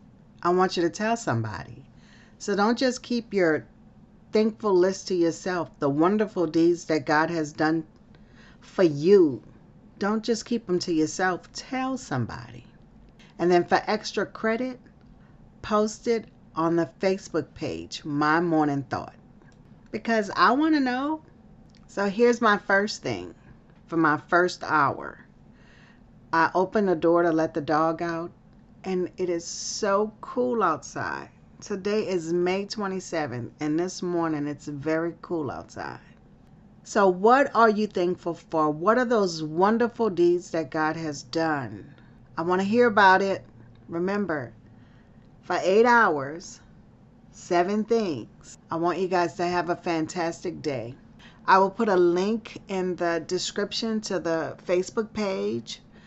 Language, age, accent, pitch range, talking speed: English, 40-59, American, 160-210 Hz, 145 wpm